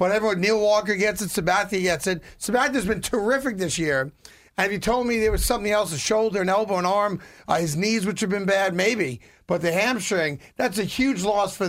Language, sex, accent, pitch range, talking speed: English, male, American, 180-235 Hz, 220 wpm